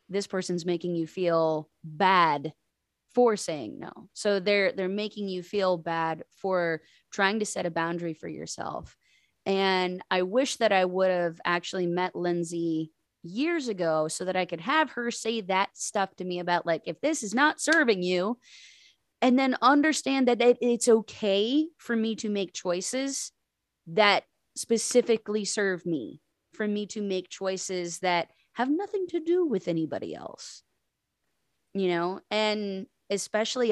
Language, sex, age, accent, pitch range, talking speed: English, female, 20-39, American, 175-215 Hz, 155 wpm